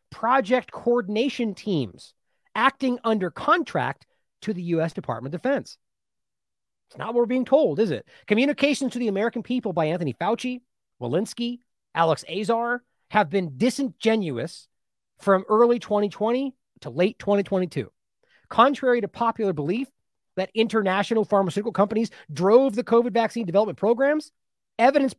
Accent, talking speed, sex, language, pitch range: American, 130 wpm, male, English, 180-250 Hz